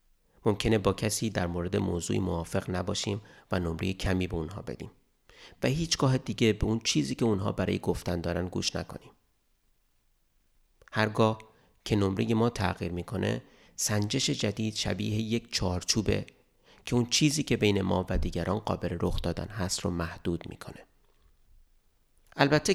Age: 30-49